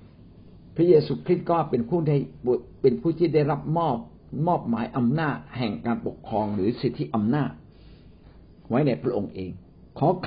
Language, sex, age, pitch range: Thai, male, 60-79, 95-150 Hz